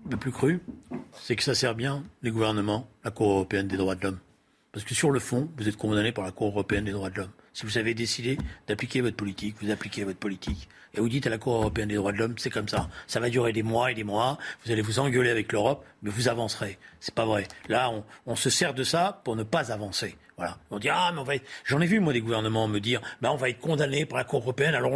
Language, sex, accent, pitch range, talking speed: French, male, French, 110-170 Hz, 280 wpm